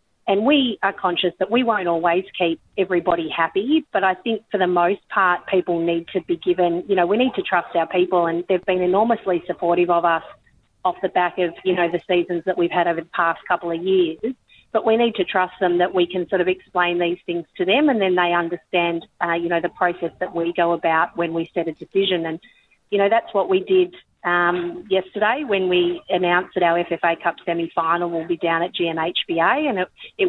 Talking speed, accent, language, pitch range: 225 wpm, Australian, English, 165-185 Hz